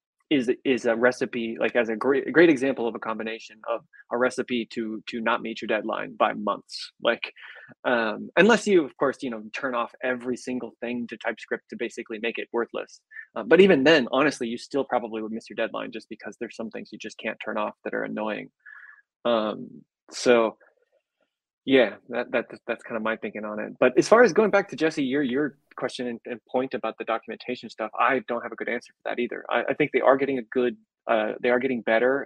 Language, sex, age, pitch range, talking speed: English, male, 20-39, 110-130 Hz, 225 wpm